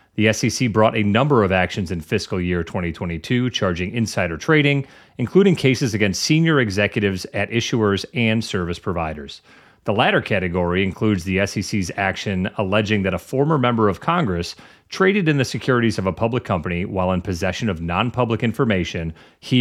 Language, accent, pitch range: English, American, 90-120 Hz